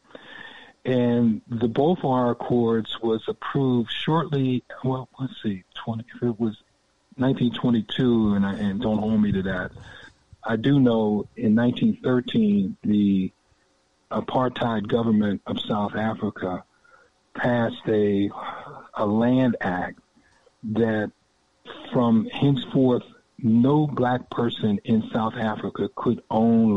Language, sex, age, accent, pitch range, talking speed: English, male, 50-69, American, 105-125 Hz, 110 wpm